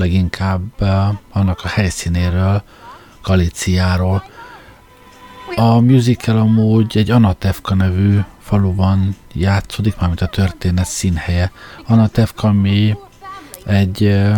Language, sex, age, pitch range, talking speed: Hungarian, male, 50-69, 95-110 Hz, 90 wpm